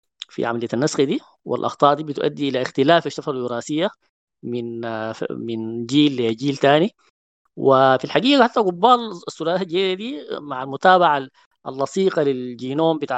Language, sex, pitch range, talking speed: Arabic, female, 125-170 Hz, 125 wpm